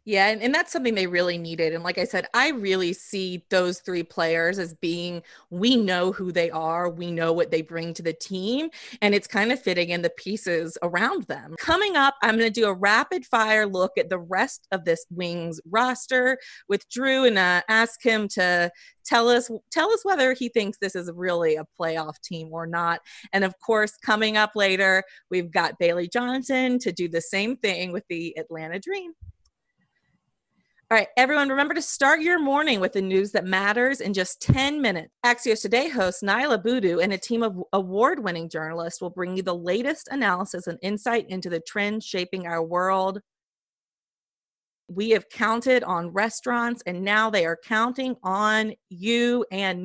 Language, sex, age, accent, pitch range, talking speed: English, female, 30-49, American, 180-235 Hz, 185 wpm